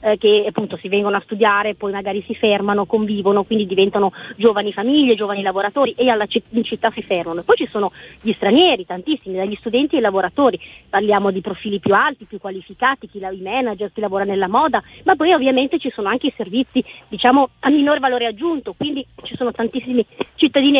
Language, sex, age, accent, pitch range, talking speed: Italian, female, 30-49, native, 205-275 Hz, 195 wpm